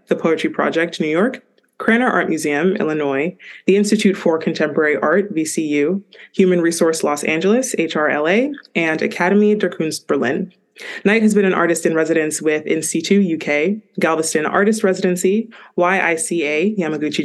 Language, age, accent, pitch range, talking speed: English, 20-39, American, 155-205 Hz, 130 wpm